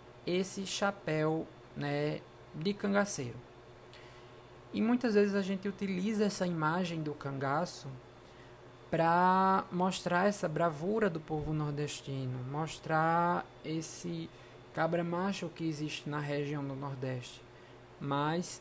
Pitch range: 140-170 Hz